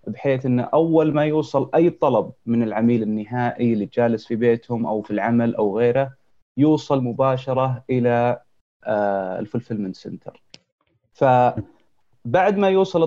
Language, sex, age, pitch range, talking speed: Arabic, male, 30-49, 115-140 Hz, 125 wpm